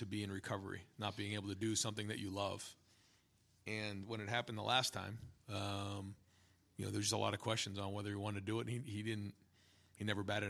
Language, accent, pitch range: English, American, 100-115 Hz